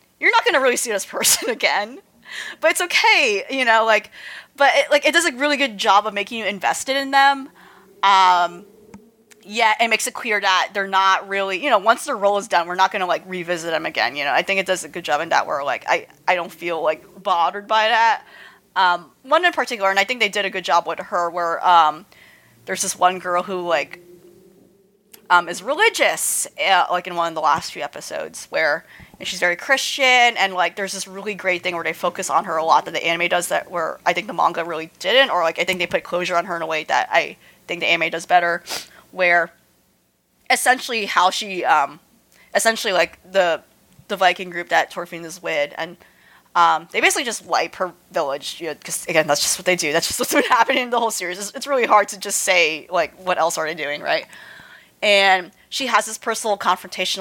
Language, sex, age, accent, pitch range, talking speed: English, female, 30-49, American, 175-220 Hz, 230 wpm